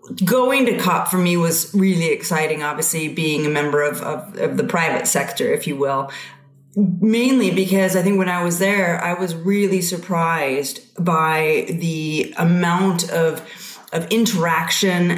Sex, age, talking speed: female, 30-49, 150 wpm